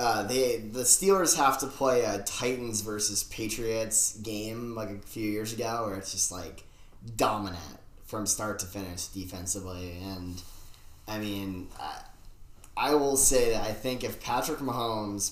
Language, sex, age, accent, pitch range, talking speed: English, male, 10-29, American, 95-110 Hz, 155 wpm